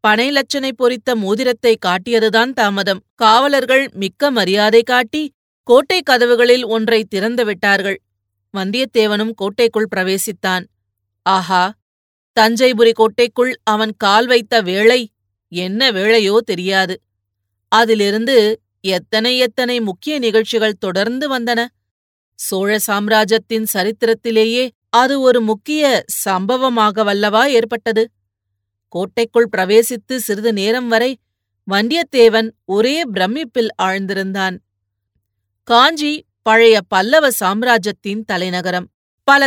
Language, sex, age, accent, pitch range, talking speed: Tamil, female, 30-49, native, 195-240 Hz, 85 wpm